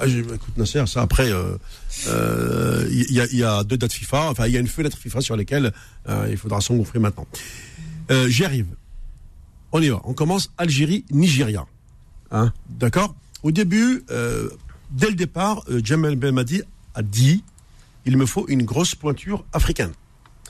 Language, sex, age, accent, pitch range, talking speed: French, male, 50-69, French, 115-160 Hz, 170 wpm